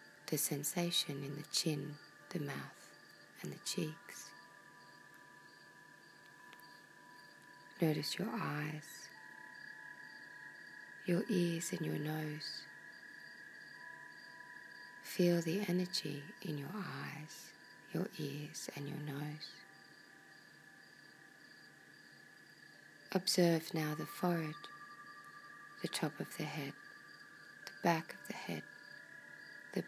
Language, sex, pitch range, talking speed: English, female, 155-245 Hz, 90 wpm